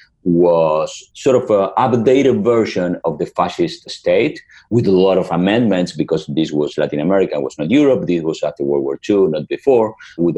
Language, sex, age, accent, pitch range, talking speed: English, male, 50-69, Spanish, 75-115 Hz, 190 wpm